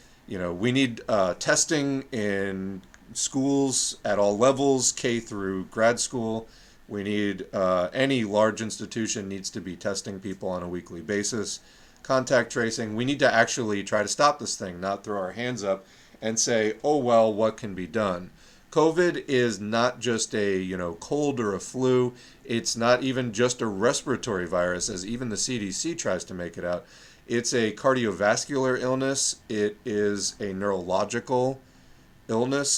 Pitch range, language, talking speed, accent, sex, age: 100-125 Hz, English, 165 wpm, American, male, 40-59